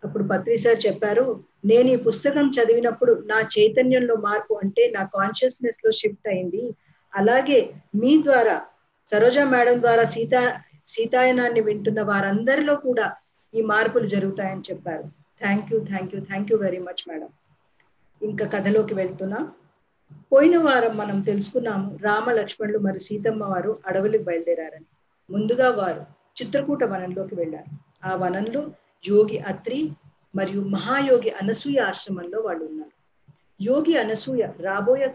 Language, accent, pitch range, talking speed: Telugu, native, 190-240 Hz, 125 wpm